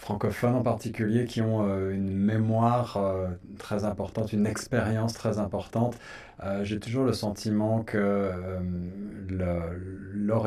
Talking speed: 110 wpm